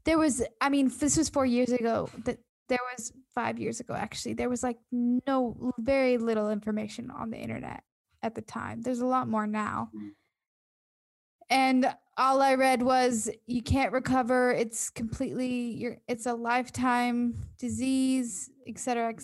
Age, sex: 10-29, female